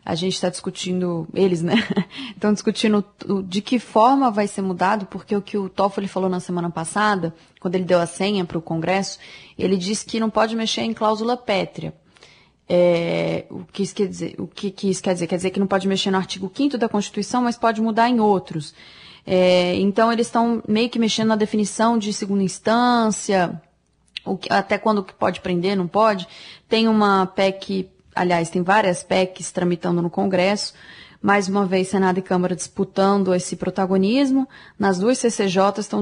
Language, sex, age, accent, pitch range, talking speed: Portuguese, female, 20-39, Brazilian, 180-215 Hz, 180 wpm